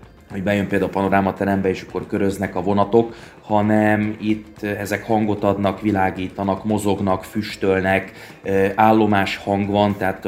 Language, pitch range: Hungarian, 95-110 Hz